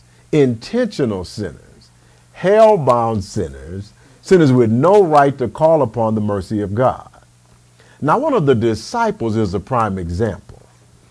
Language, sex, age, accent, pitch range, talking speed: English, male, 50-69, American, 100-135 Hz, 135 wpm